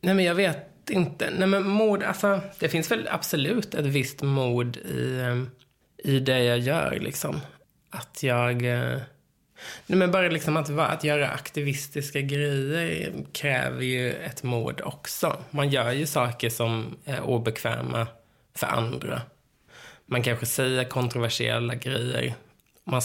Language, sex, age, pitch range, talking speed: English, male, 20-39, 120-145 Hz, 120 wpm